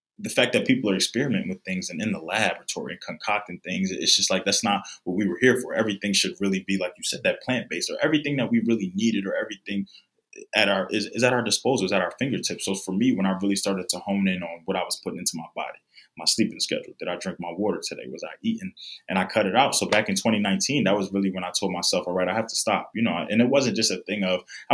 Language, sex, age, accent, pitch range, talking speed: English, male, 20-39, American, 95-130 Hz, 280 wpm